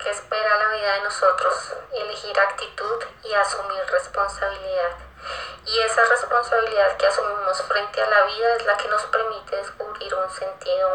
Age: 20-39